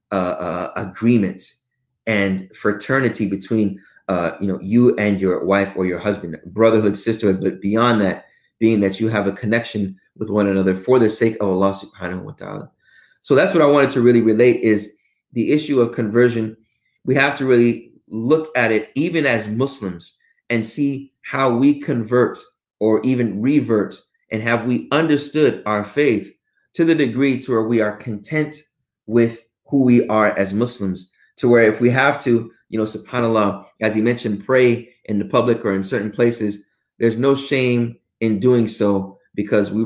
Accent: American